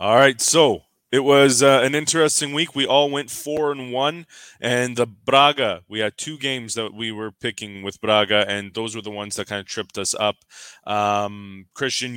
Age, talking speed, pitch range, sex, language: 20-39, 195 wpm, 100-135 Hz, male, English